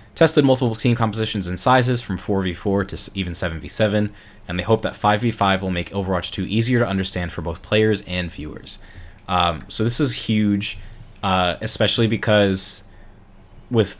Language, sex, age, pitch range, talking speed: English, male, 20-39, 90-100 Hz, 160 wpm